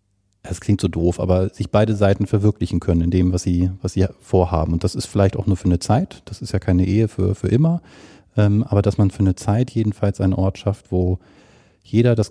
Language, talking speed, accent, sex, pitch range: German, 230 wpm, German, male, 95-115 Hz